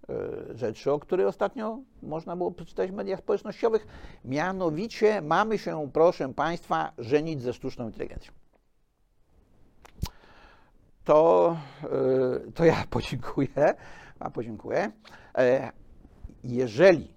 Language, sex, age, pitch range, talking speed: Polish, male, 60-79, 120-200 Hz, 90 wpm